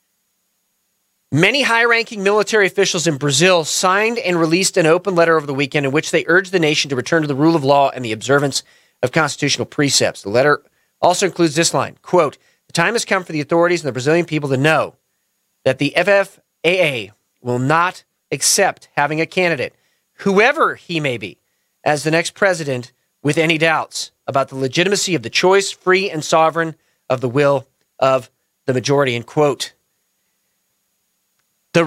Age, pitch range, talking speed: 40-59, 145-195 Hz, 175 wpm